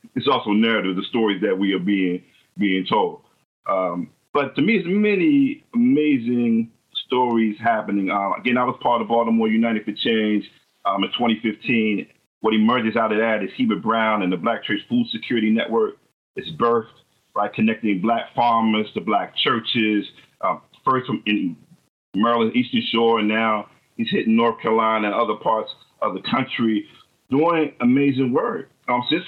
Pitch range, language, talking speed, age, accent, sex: 115-155 Hz, English, 165 wpm, 40-59, American, male